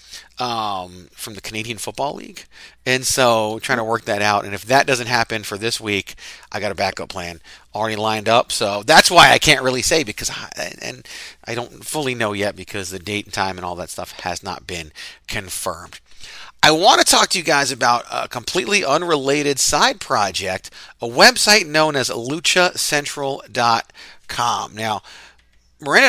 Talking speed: 175 wpm